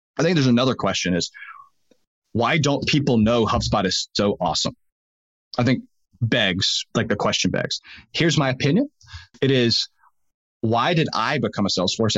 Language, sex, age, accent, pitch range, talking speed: English, male, 30-49, American, 105-145 Hz, 160 wpm